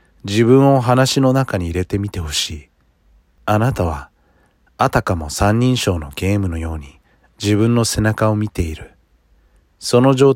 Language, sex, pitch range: Japanese, male, 80-110 Hz